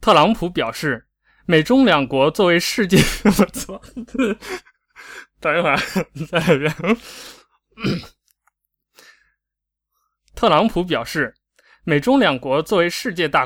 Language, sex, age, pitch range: Chinese, male, 20-39, 150-210 Hz